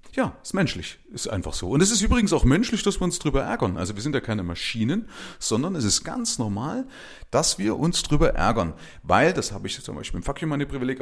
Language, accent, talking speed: German, German, 230 wpm